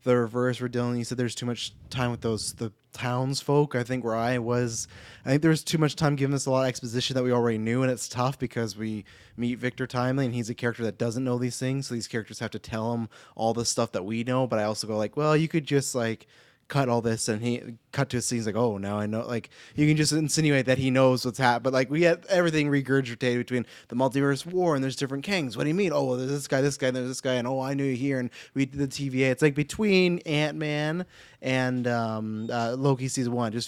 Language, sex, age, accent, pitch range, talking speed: English, male, 20-39, American, 120-145 Hz, 265 wpm